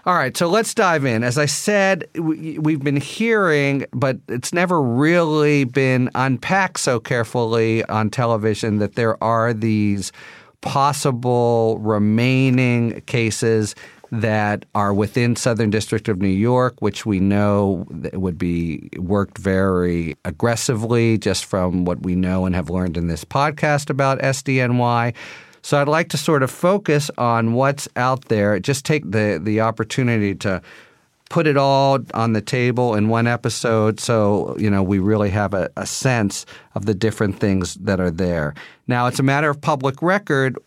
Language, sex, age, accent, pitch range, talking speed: English, male, 40-59, American, 105-135 Hz, 160 wpm